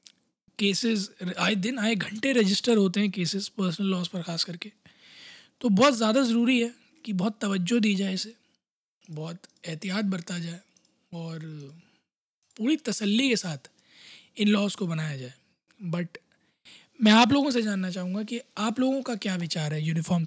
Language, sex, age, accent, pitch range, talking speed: Hindi, male, 20-39, native, 185-230 Hz, 160 wpm